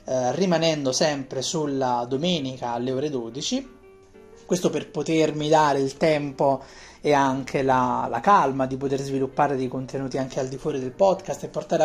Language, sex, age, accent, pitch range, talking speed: Italian, male, 30-49, native, 130-175 Hz, 155 wpm